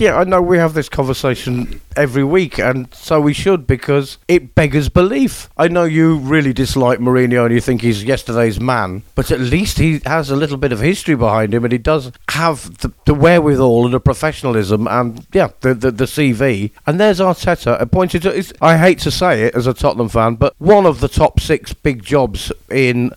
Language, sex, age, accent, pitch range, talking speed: English, male, 50-69, British, 120-155 Hz, 205 wpm